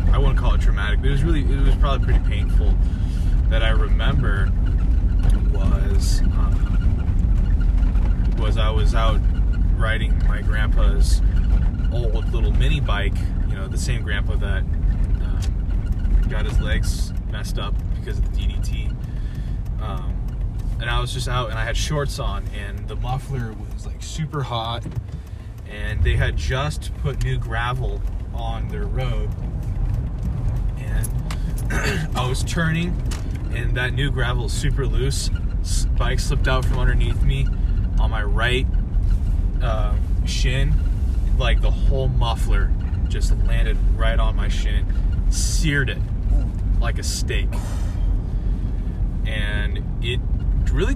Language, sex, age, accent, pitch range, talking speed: English, male, 20-39, American, 85-110 Hz, 135 wpm